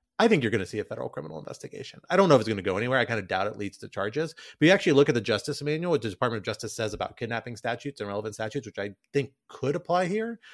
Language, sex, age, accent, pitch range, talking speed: English, male, 30-49, American, 105-140 Hz, 300 wpm